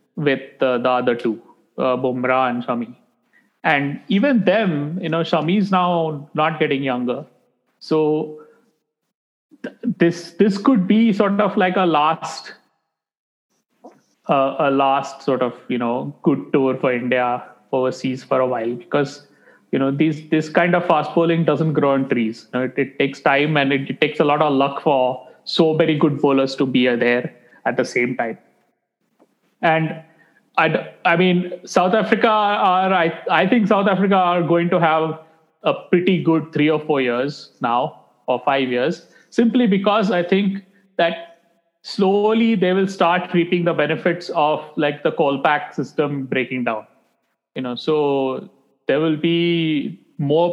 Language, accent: English, Indian